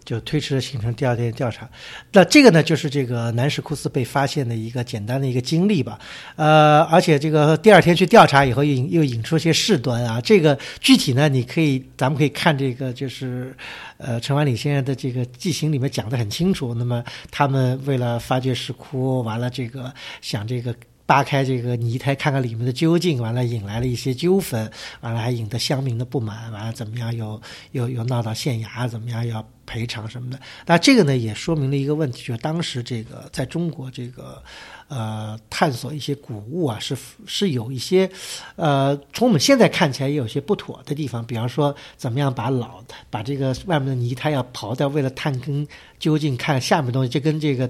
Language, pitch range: Chinese, 125-150 Hz